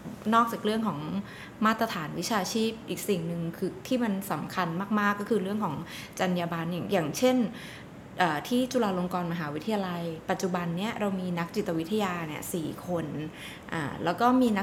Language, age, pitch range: Thai, 20-39, 180-225 Hz